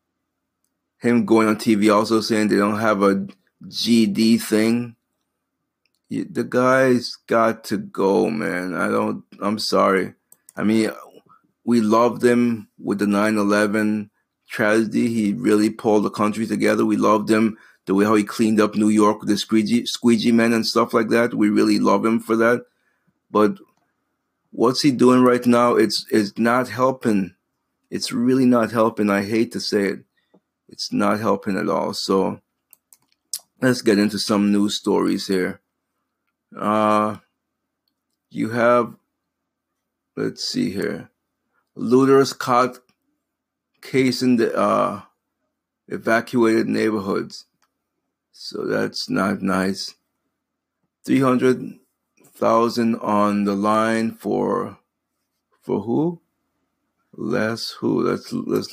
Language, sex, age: English, male, 30-49